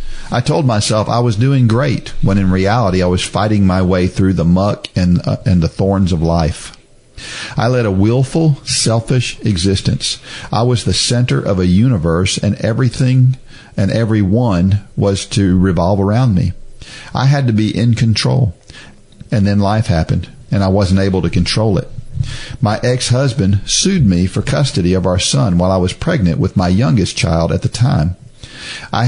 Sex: male